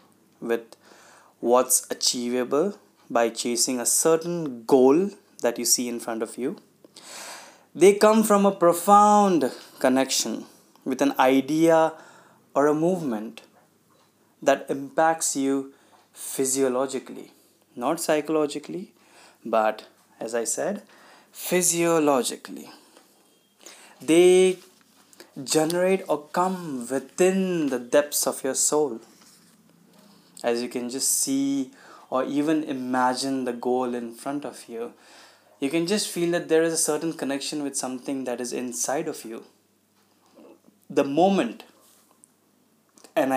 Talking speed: 115 wpm